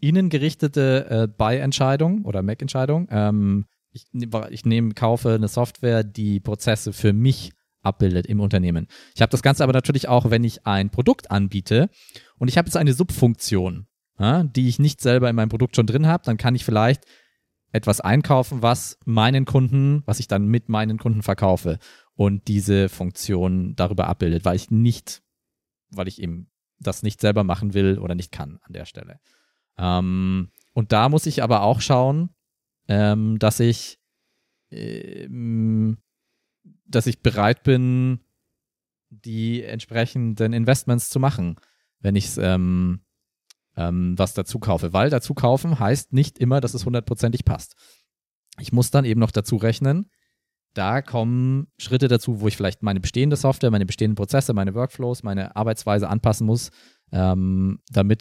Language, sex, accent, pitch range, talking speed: German, male, German, 100-130 Hz, 160 wpm